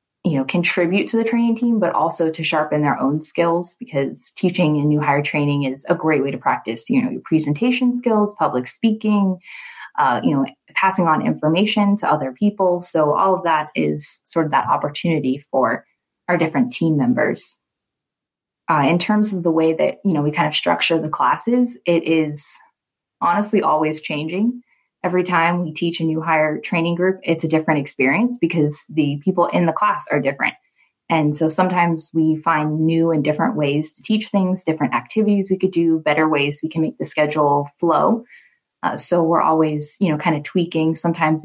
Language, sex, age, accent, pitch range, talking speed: English, female, 20-39, American, 155-195 Hz, 190 wpm